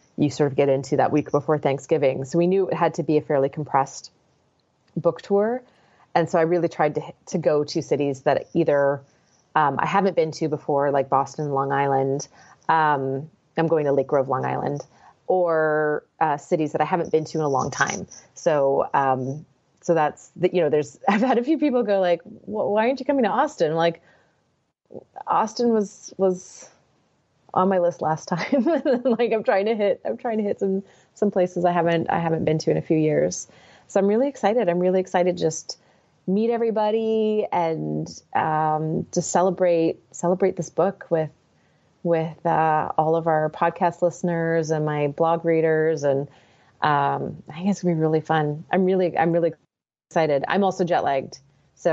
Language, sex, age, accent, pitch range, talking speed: English, female, 30-49, American, 150-185 Hz, 190 wpm